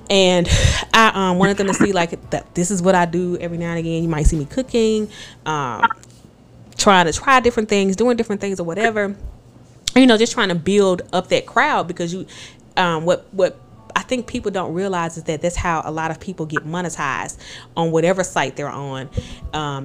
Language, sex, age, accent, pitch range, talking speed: English, female, 20-39, American, 155-190 Hz, 210 wpm